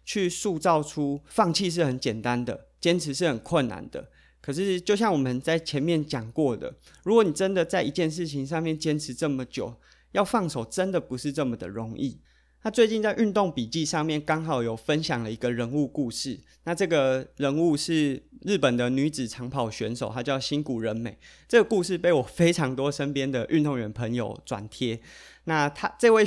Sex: male